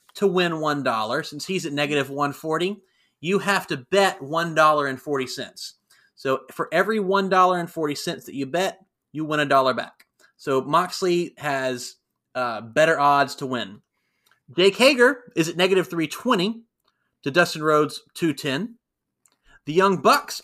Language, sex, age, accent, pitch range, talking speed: English, male, 30-49, American, 145-190 Hz, 165 wpm